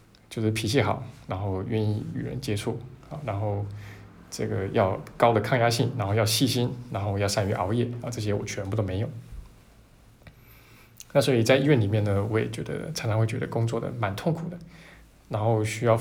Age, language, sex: 20-39, Chinese, male